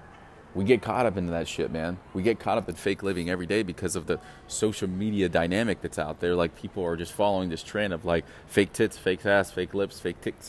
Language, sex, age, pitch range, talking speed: English, male, 30-49, 90-120 Hz, 245 wpm